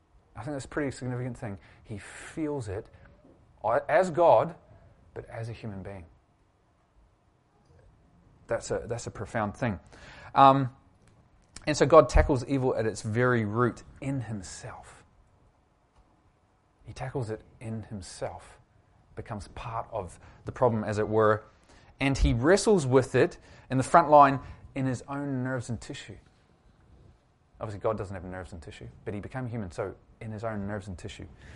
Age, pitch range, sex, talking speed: 30-49, 100-125 Hz, male, 150 wpm